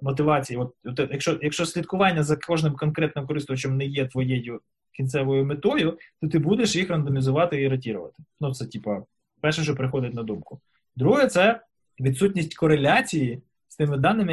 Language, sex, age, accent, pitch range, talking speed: Ukrainian, male, 20-39, native, 130-165 Hz, 155 wpm